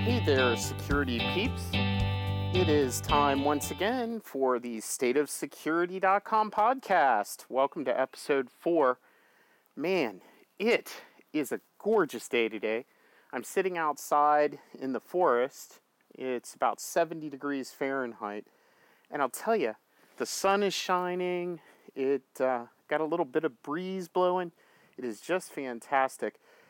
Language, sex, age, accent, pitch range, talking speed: English, male, 40-59, American, 130-195 Hz, 125 wpm